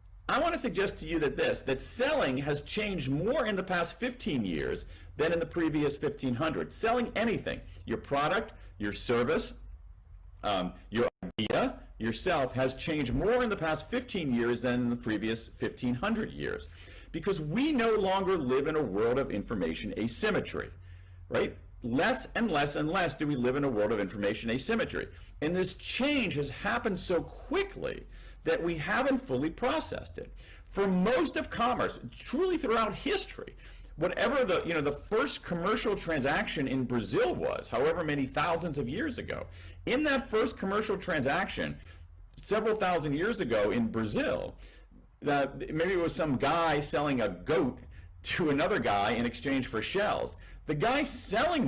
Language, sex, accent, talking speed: Portuguese, male, American, 165 wpm